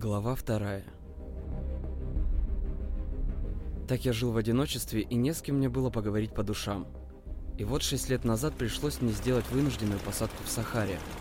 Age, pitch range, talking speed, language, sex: 20-39, 100-130 Hz, 150 wpm, Russian, male